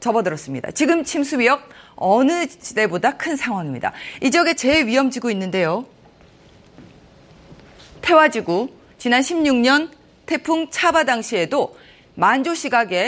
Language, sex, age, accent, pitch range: Korean, female, 30-49, native, 210-295 Hz